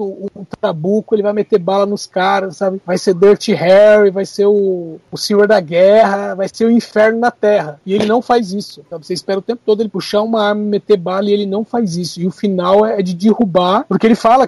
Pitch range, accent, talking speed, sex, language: 200-240 Hz, Brazilian, 245 wpm, male, Portuguese